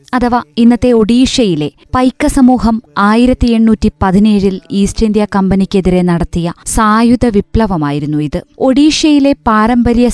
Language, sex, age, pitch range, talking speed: Malayalam, female, 20-39, 190-240 Hz, 100 wpm